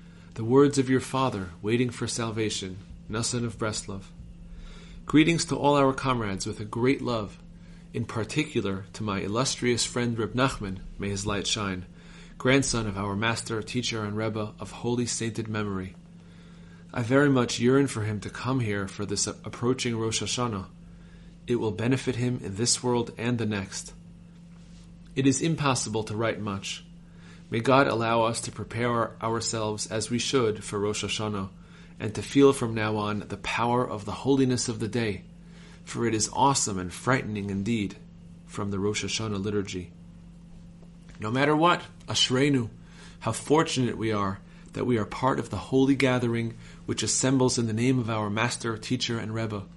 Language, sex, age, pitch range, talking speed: English, male, 30-49, 100-130 Hz, 170 wpm